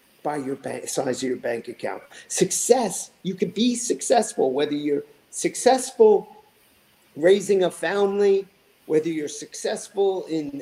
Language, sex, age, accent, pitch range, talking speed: English, male, 50-69, American, 165-245 Hz, 120 wpm